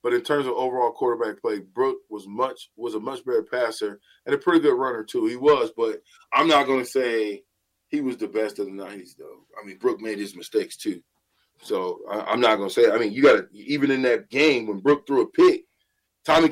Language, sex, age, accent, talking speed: English, male, 20-39, American, 240 wpm